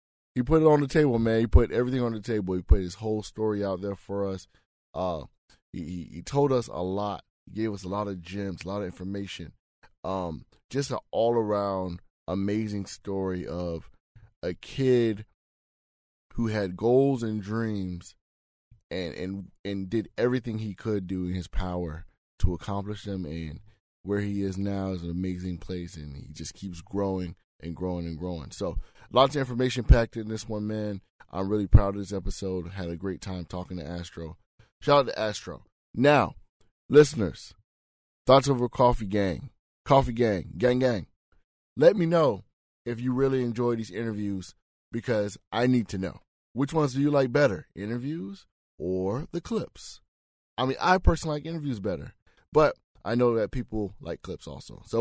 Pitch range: 90-120 Hz